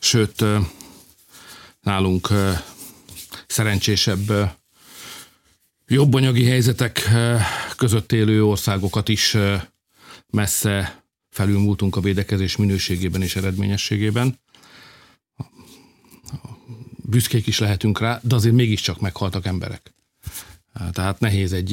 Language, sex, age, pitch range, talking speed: Hungarian, male, 50-69, 90-110 Hz, 80 wpm